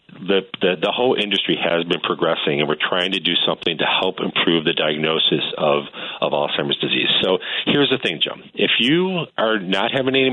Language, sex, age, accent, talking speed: English, male, 40-59, American, 200 wpm